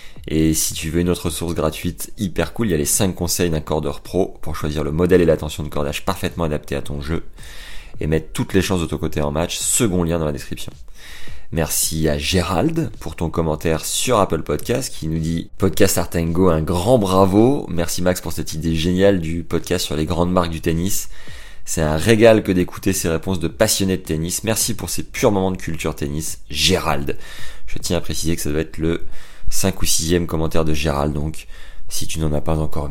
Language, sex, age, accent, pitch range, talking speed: French, male, 30-49, French, 80-95 Hz, 220 wpm